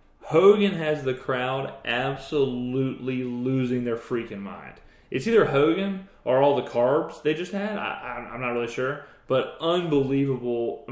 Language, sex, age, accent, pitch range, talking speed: English, male, 30-49, American, 120-155 Hz, 155 wpm